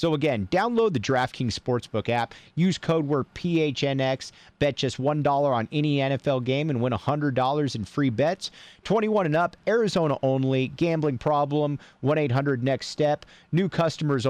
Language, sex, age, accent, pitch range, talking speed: English, male, 40-59, American, 120-145 Hz, 145 wpm